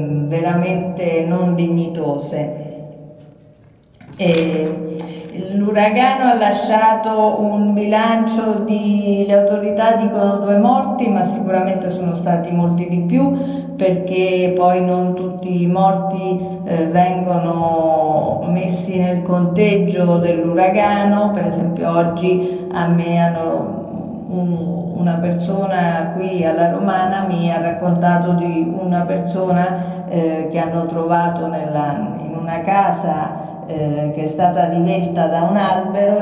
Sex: female